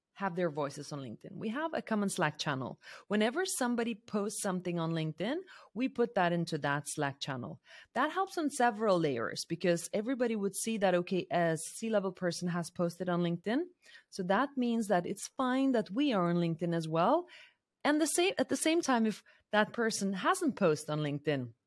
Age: 30-49